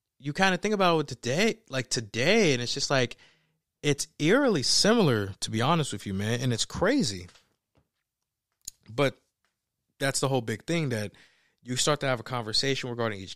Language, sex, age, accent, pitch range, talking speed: English, male, 20-39, American, 115-150 Hz, 185 wpm